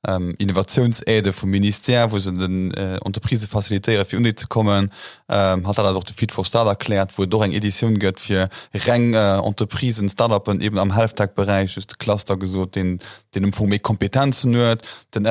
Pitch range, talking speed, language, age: 100-120 Hz, 180 wpm, English, 20-39